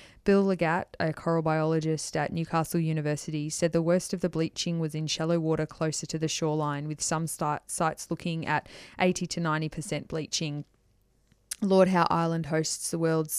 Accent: Australian